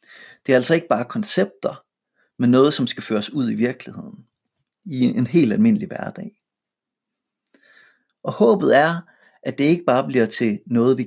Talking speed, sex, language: 165 wpm, male, Danish